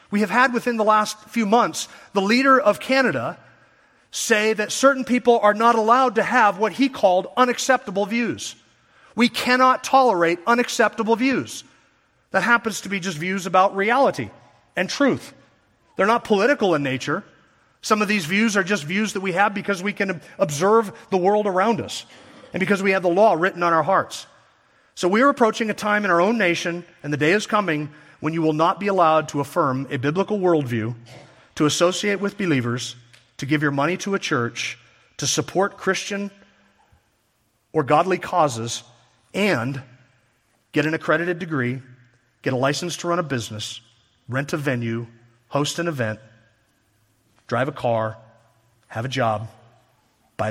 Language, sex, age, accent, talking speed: English, male, 40-59, American, 170 wpm